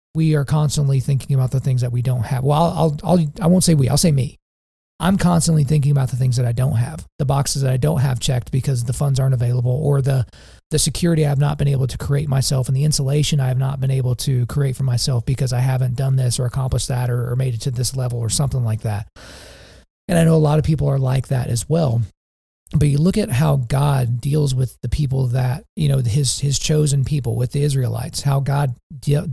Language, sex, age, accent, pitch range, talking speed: English, male, 40-59, American, 130-155 Hz, 250 wpm